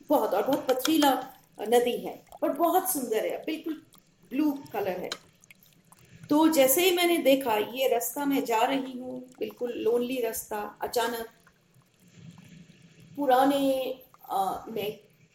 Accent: native